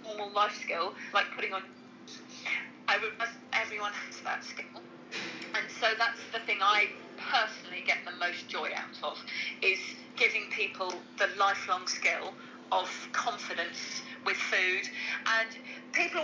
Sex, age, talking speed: female, 40-59, 135 wpm